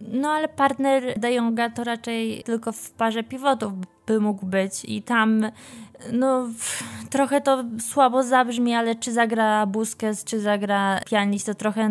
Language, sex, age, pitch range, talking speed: Polish, female, 20-39, 205-240 Hz, 150 wpm